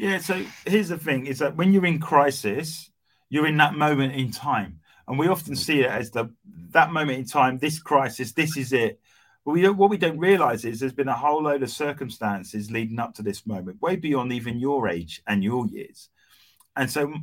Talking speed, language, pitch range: 215 wpm, English, 105-145 Hz